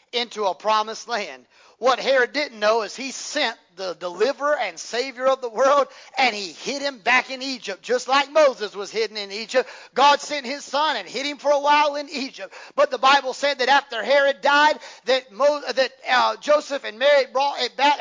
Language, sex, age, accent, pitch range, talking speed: English, male, 40-59, American, 265-320 Hz, 205 wpm